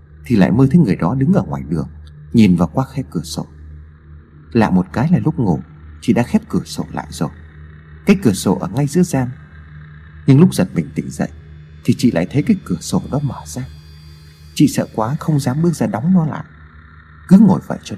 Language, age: Vietnamese, 30-49